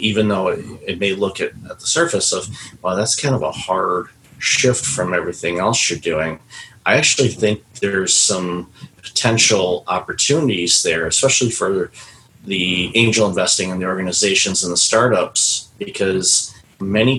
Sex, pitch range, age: male, 90-115 Hz, 30-49